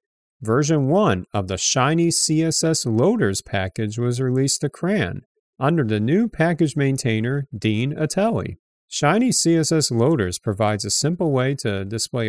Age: 40-59